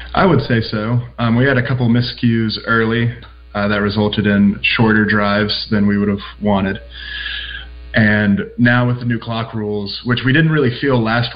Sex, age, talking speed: male, 20-39, 185 wpm